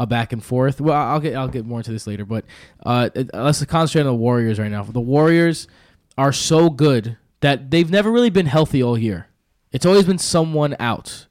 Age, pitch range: 20-39, 120-160 Hz